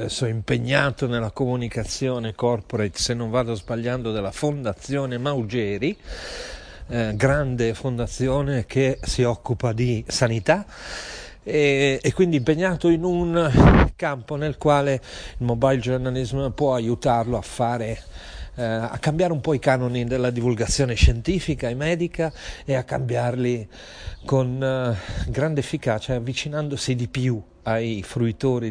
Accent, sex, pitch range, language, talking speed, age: native, male, 115-145 Hz, Italian, 125 wpm, 40-59